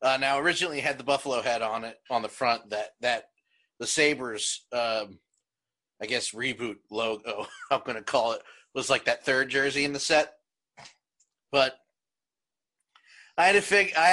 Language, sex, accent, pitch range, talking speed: English, male, American, 130-175 Hz, 175 wpm